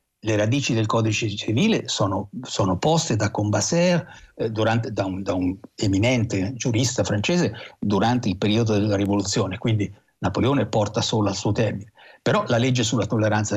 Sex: male